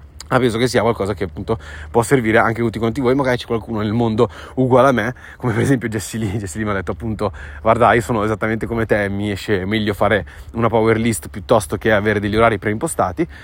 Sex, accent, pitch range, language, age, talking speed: male, native, 110-135 Hz, Italian, 20-39, 230 wpm